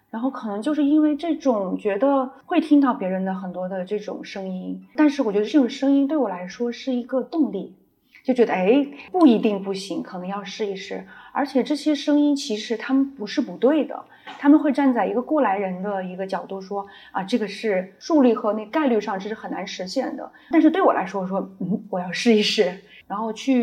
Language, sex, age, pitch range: Chinese, female, 30-49, 190-260 Hz